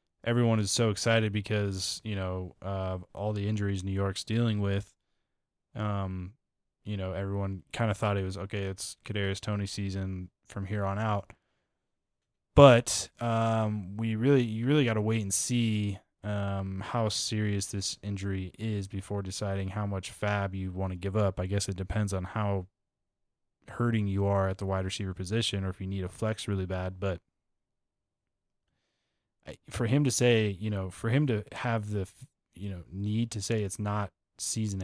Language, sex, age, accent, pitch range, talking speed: English, male, 20-39, American, 95-110 Hz, 175 wpm